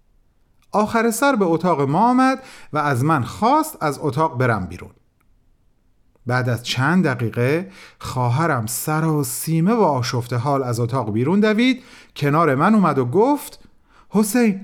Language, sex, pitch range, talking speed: Persian, male, 125-210 Hz, 145 wpm